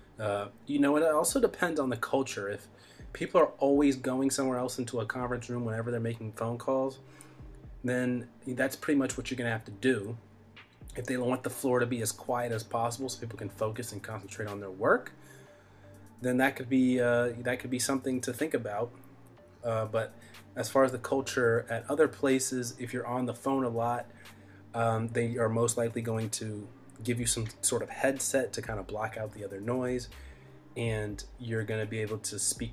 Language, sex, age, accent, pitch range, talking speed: English, male, 30-49, American, 110-130 Hz, 205 wpm